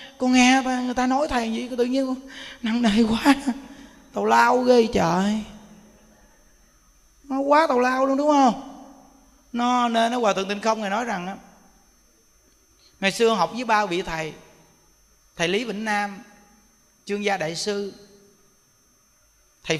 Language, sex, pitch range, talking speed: Vietnamese, male, 195-260 Hz, 150 wpm